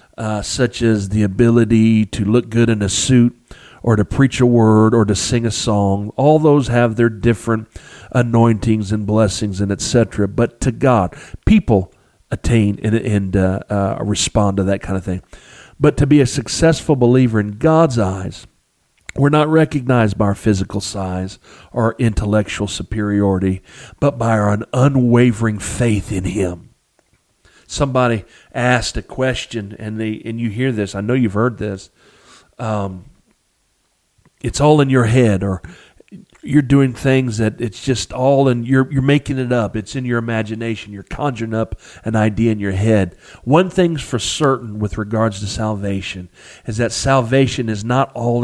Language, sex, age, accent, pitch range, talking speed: English, male, 50-69, American, 105-125 Hz, 165 wpm